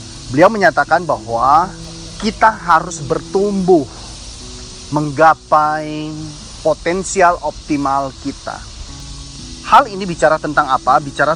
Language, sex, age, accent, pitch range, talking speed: Indonesian, male, 30-49, native, 135-175 Hz, 85 wpm